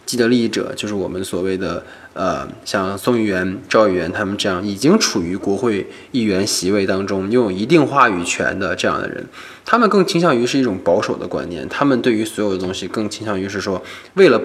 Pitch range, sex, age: 100-135 Hz, male, 20-39